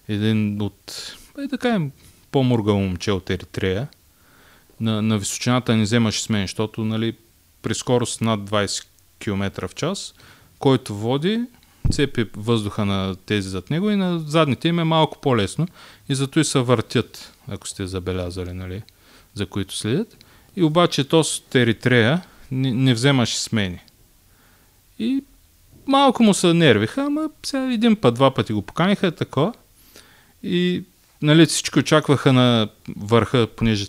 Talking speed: 135 wpm